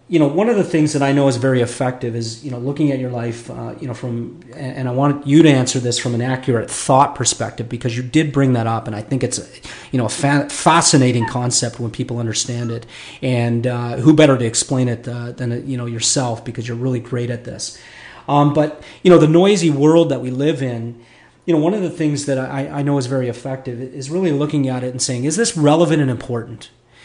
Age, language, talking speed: 40-59, English, 240 wpm